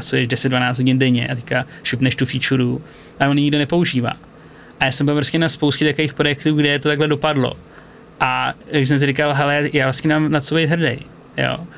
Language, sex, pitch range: Slovak, male, 130-145 Hz